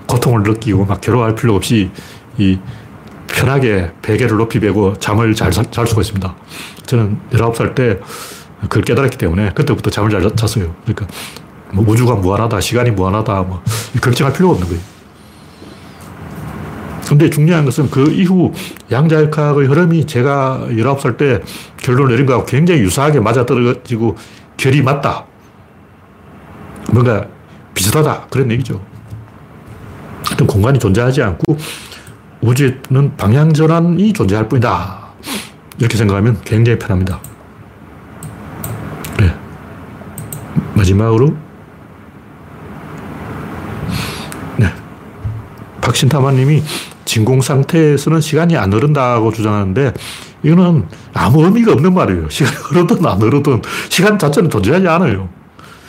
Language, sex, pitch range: Korean, male, 105-145 Hz